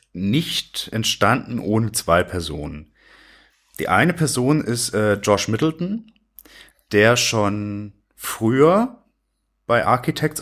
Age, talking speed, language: 30-49, 100 wpm, German